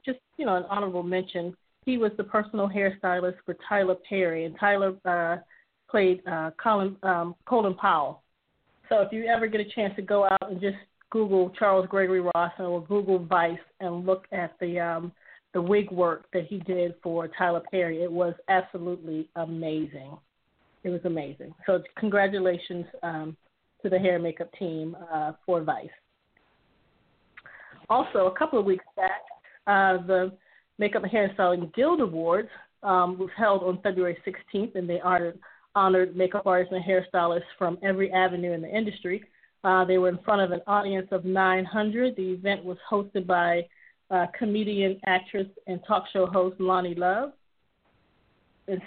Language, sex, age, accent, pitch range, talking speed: English, female, 30-49, American, 180-200 Hz, 165 wpm